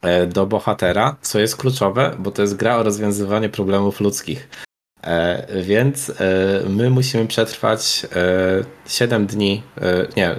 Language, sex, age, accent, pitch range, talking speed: Polish, male, 20-39, native, 95-105 Hz, 115 wpm